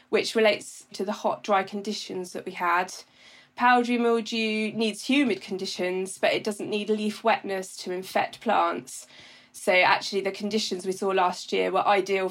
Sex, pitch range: female, 195-225 Hz